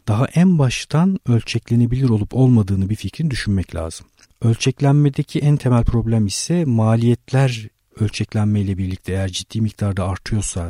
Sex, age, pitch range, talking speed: male, 50-69, 95-120 Hz, 130 wpm